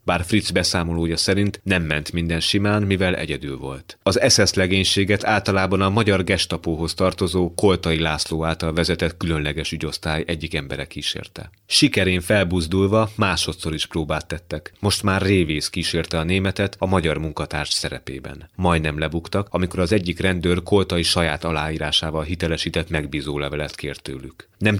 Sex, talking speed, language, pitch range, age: male, 140 wpm, Hungarian, 80-95 Hz, 30-49